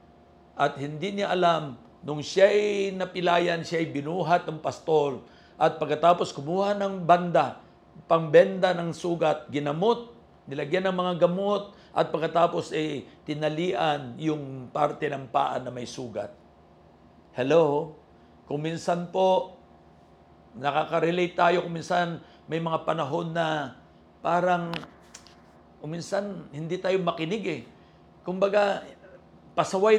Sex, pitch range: male, 145-180 Hz